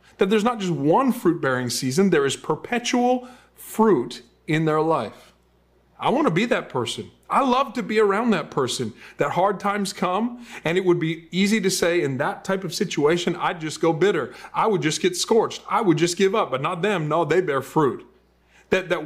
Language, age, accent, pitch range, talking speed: English, 40-59, American, 130-195 Hz, 210 wpm